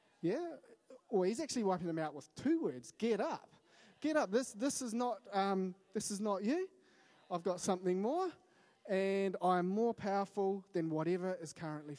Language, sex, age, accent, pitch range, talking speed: English, male, 20-39, Australian, 135-190 Hz, 165 wpm